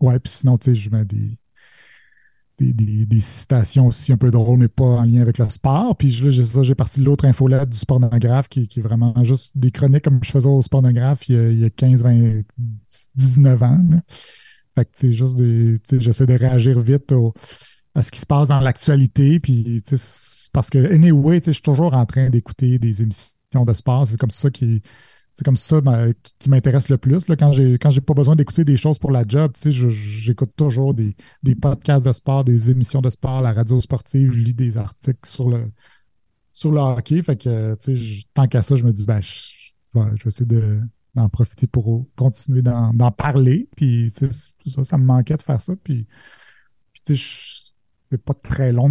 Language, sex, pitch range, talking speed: French, male, 115-140 Hz, 220 wpm